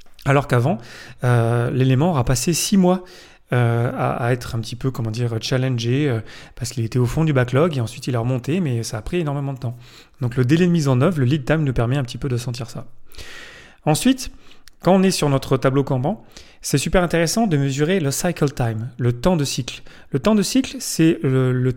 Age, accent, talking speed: 30-49, French, 225 wpm